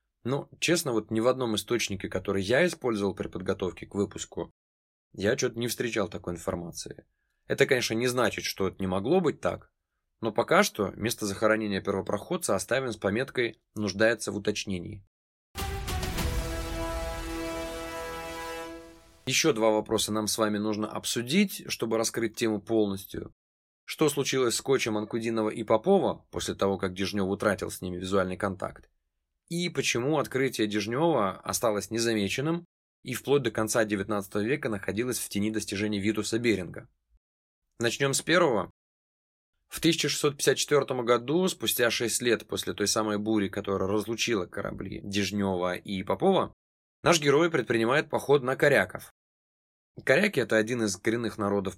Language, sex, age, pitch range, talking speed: Russian, male, 20-39, 95-120 Hz, 140 wpm